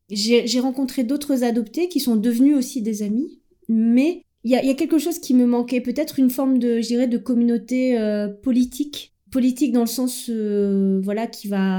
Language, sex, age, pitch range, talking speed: French, female, 30-49, 215-255 Hz, 190 wpm